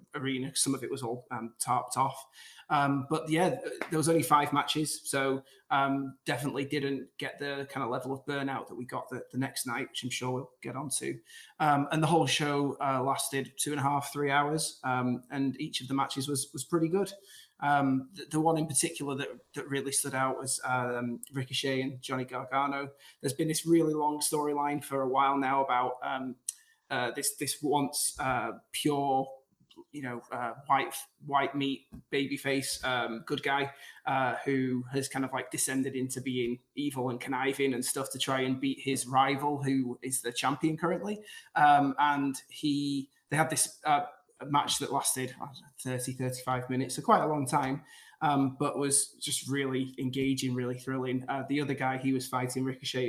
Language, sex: English, male